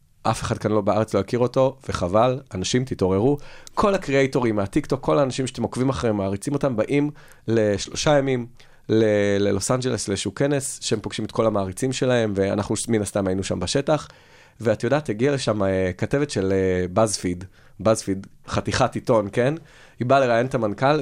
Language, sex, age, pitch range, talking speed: Hebrew, male, 30-49, 110-140 Hz, 155 wpm